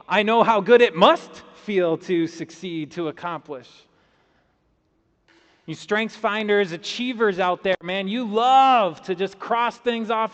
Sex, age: male, 30-49